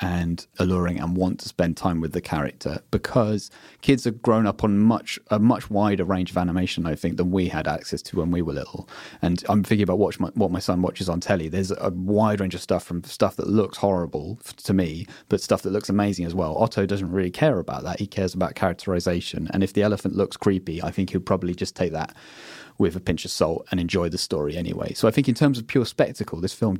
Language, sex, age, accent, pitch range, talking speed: English, male, 30-49, British, 90-105 Hz, 240 wpm